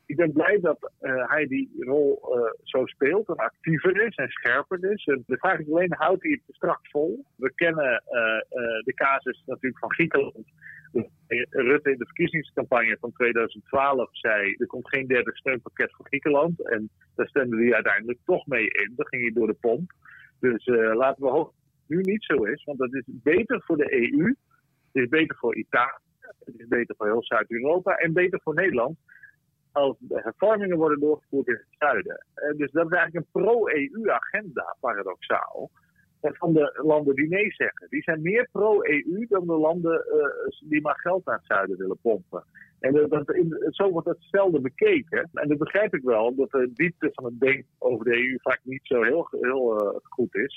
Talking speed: 200 wpm